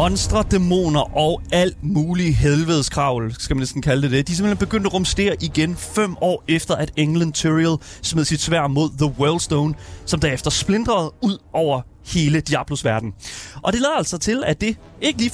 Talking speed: 175 wpm